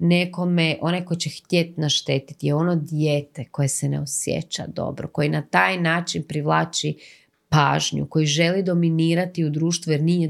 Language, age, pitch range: Croatian, 30-49, 145-180 Hz